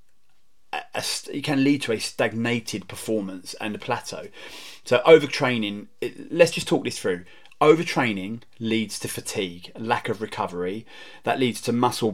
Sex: male